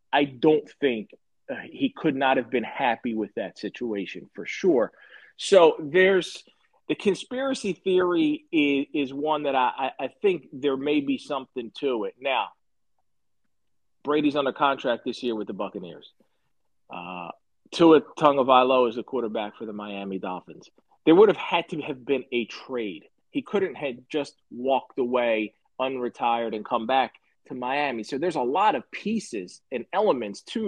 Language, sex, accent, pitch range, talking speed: English, male, American, 125-210 Hz, 160 wpm